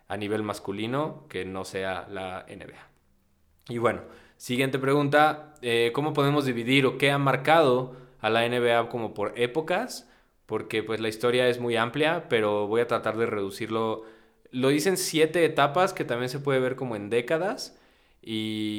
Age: 20-39